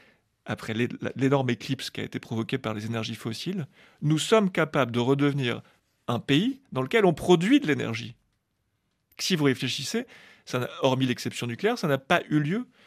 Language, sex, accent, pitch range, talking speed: French, male, French, 125-165 Hz, 175 wpm